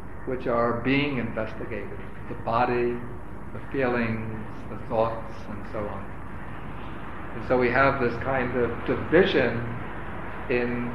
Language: English